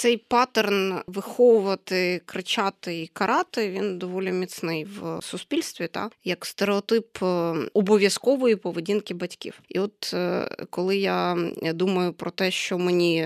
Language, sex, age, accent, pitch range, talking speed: Ukrainian, female, 20-39, native, 180-220 Hz, 120 wpm